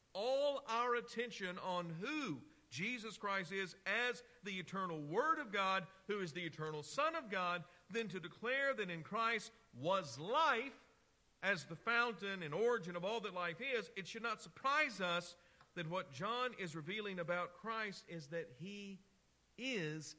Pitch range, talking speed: 140-200 Hz, 165 wpm